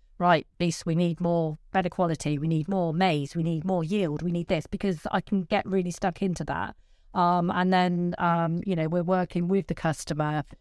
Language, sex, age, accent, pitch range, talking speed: English, female, 30-49, British, 155-190 Hz, 210 wpm